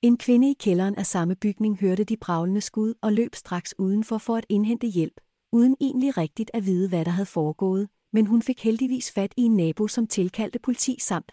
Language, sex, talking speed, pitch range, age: Danish, female, 210 wpm, 185-235 Hz, 30-49